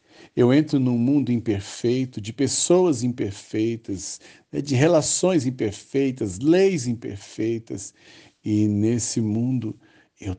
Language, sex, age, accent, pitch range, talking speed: Portuguese, male, 60-79, Brazilian, 100-120 Hz, 100 wpm